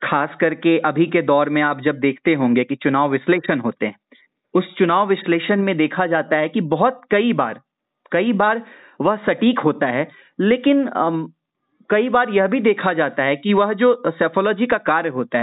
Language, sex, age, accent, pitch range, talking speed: Hindi, male, 30-49, native, 155-215 Hz, 185 wpm